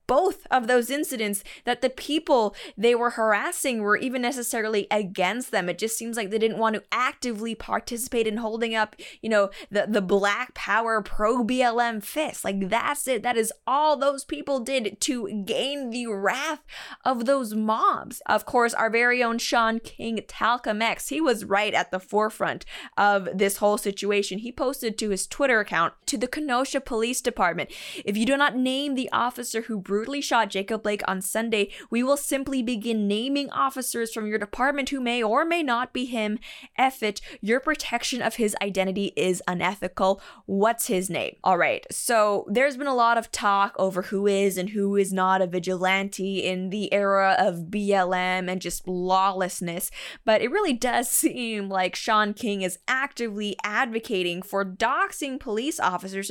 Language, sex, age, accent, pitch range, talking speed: English, female, 20-39, American, 200-255 Hz, 175 wpm